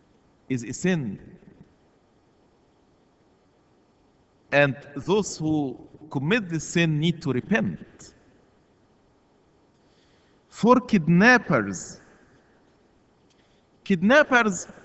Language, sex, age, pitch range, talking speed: English, male, 50-69, 145-195 Hz, 60 wpm